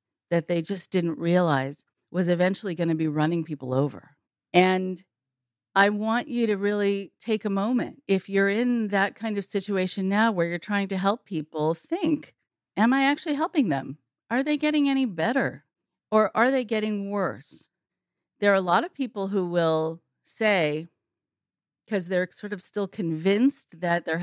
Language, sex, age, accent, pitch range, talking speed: English, female, 50-69, American, 165-215 Hz, 170 wpm